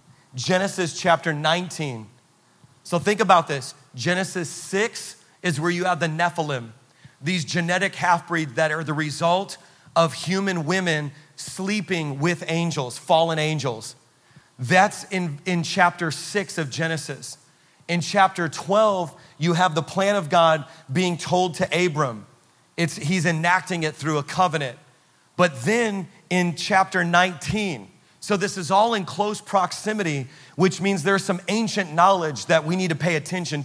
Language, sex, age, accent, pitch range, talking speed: English, male, 40-59, American, 160-190 Hz, 145 wpm